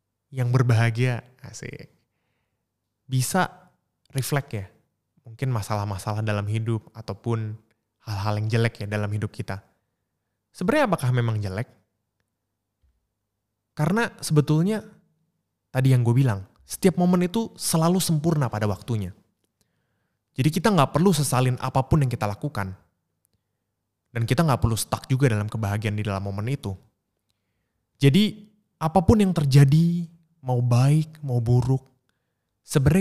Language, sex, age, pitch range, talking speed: Indonesian, male, 20-39, 105-135 Hz, 120 wpm